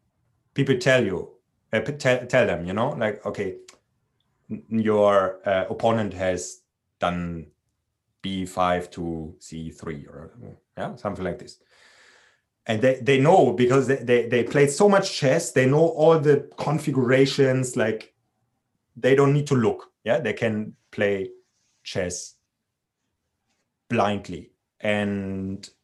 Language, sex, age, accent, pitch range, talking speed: English, male, 30-49, German, 100-130 Hz, 120 wpm